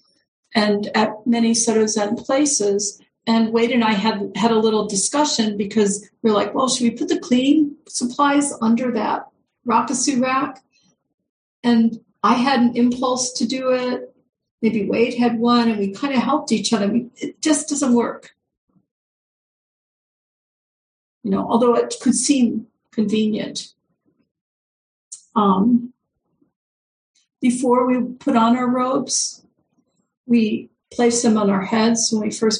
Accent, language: American, English